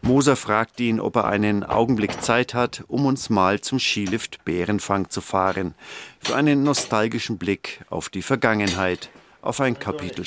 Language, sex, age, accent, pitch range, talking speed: German, male, 50-69, German, 95-120 Hz, 160 wpm